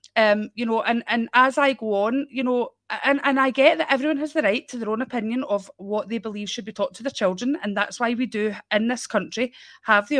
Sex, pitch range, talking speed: female, 210-275 Hz, 260 wpm